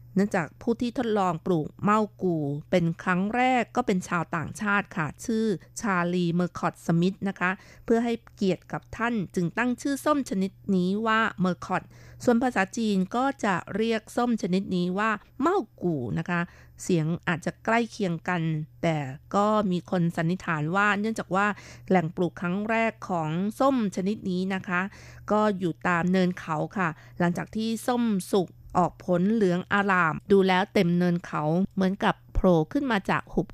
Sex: female